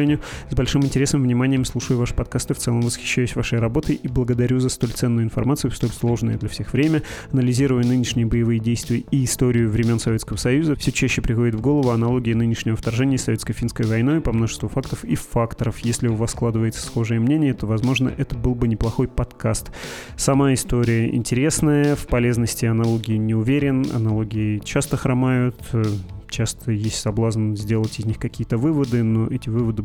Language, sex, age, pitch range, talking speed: Russian, male, 20-39, 110-130 Hz, 170 wpm